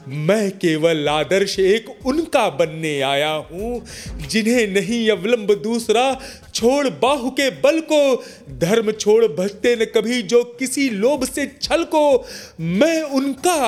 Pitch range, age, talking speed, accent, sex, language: 205-245 Hz, 30-49, 130 wpm, native, male, Hindi